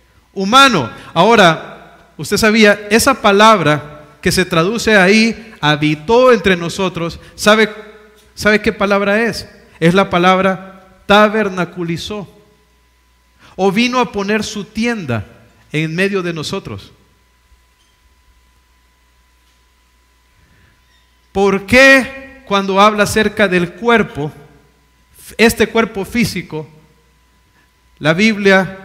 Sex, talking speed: male, 90 wpm